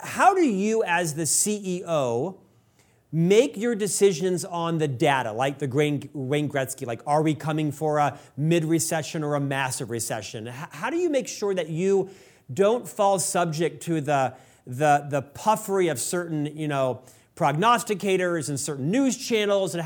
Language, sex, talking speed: English, male, 160 wpm